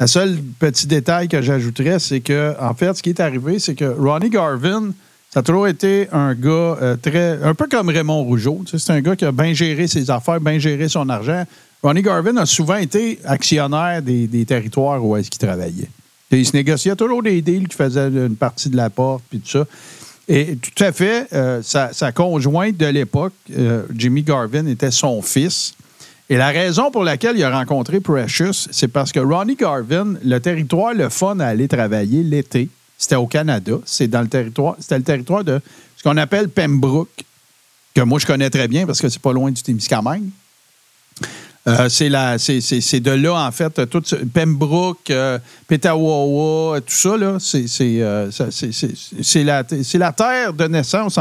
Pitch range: 135-175 Hz